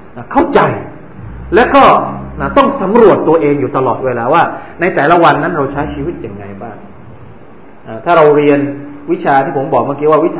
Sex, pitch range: male, 140-195 Hz